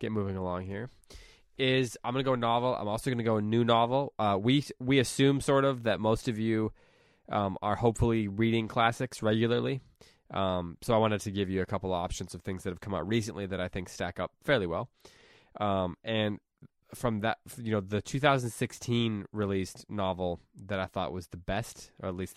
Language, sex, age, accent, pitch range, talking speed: English, male, 20-39, American, 95-115 Hz, 205 wpm